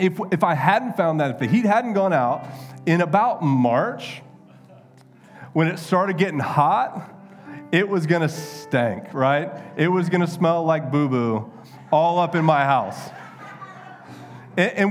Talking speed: 160 wpm